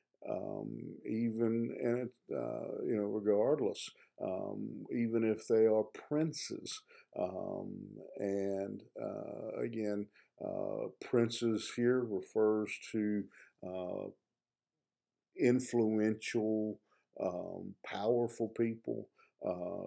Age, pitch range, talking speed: 50-69, 100-120 Hz, 90 wpm